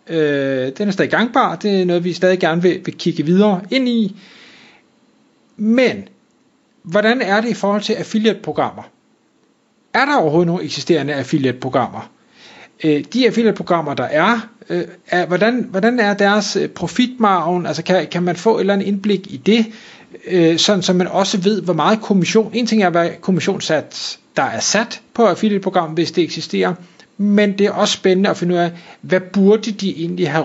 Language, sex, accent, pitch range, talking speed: Danish, male, native, 170-220 Hz, 180 wpm